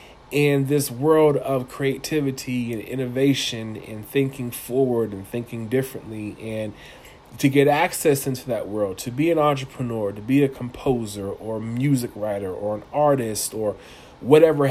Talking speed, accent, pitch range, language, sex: 150 wpm, American, 120-150 Hz, English, male